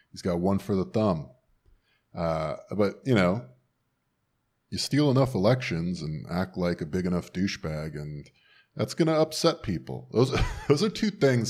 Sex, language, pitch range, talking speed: male, English, 85-120 Hz, 165 wpm